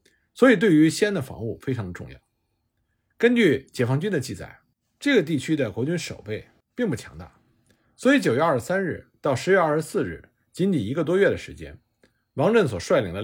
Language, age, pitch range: Chinese, 50-69, 110-180 Hz